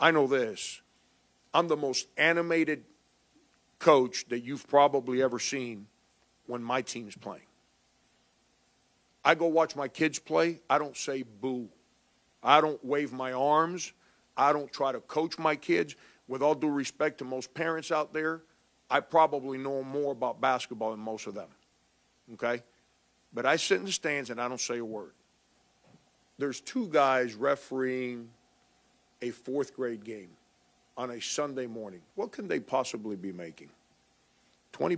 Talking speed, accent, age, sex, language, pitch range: 155 wpm, American, 50-69, male, English, 115-145 Hz